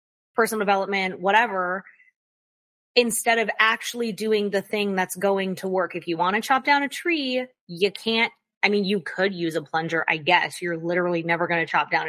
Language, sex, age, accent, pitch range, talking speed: English, female, 20-39, American, 190-235 Hz, 195 wpm